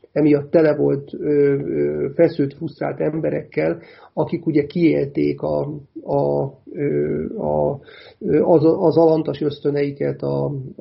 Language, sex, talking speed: Hungarian, male, 60 wpm